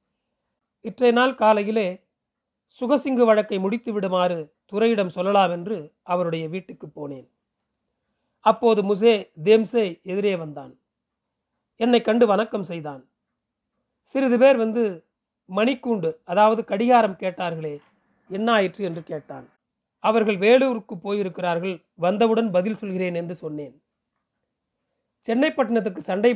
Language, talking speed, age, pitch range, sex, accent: Tamil, 95 wpm, 40-59, 180-230 Hz, male, native